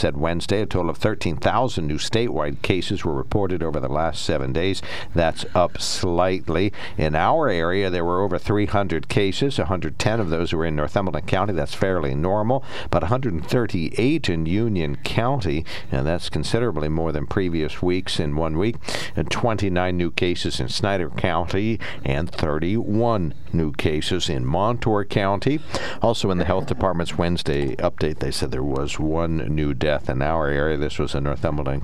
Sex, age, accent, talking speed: male, 60-79, American, 165 wpm